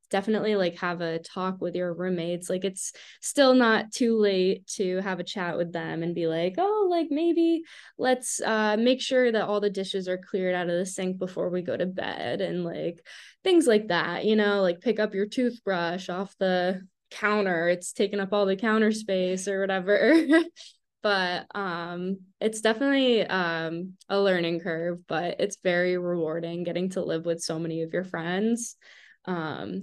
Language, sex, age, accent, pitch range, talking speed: English, female, 10-29, American, 175-215 Hz, 185 wpm